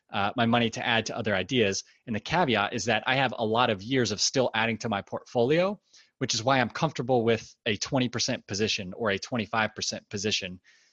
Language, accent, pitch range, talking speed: English, American, 110-135 Hz, 210 wpm